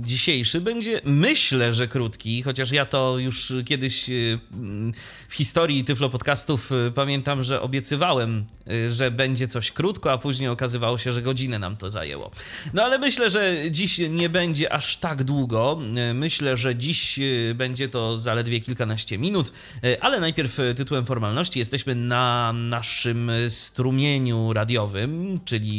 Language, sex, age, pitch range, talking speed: Polish, male, 30-49, 115-140 Hz, 135 wpm